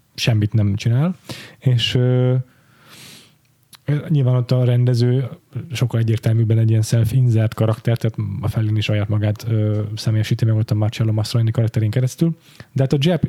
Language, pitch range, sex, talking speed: Hungarian, 110-130 Hz, male, 145 wpm